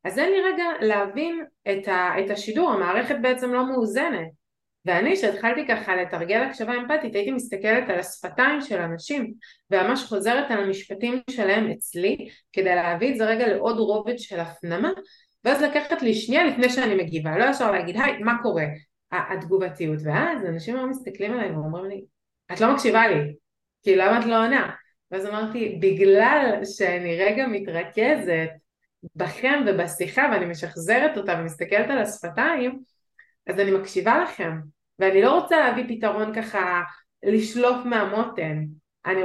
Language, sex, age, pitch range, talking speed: Hebrew, female, 30-49, 185-250 Hz, 150 wpm